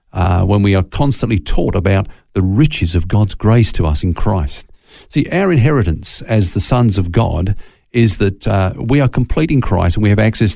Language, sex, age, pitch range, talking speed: English, male, 50-69, 95-130 Hz, 205 wpm